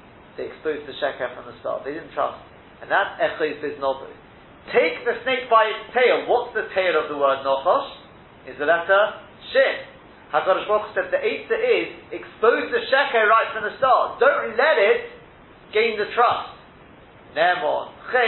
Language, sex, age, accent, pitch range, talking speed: English, male, 40-59, British, 170-255 Hz, 175 wpm